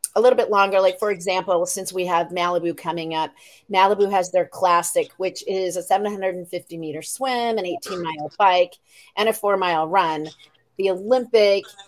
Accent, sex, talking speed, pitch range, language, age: American, female, 170 wpm, 180-230 Hz, English, 40-59